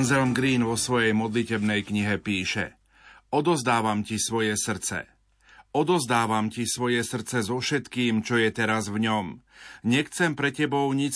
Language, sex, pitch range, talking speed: Slovak, male, 110-130 Hz, 140 wpm